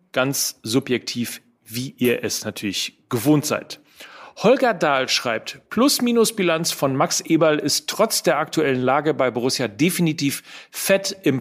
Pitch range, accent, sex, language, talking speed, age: 135-180 Hz, German, male, German, 130 wpm, 40-59